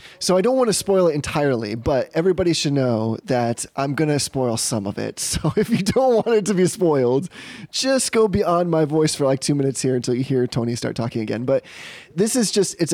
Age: 20-39